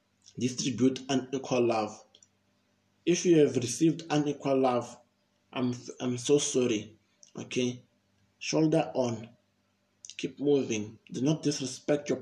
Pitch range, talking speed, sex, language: 105-135 Hz, 110 wpm, male, English